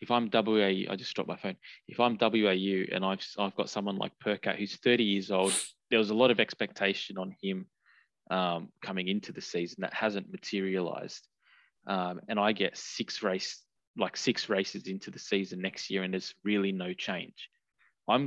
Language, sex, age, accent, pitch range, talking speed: English, male, 20-39, Australian, 90-105 Hz, 190 wpm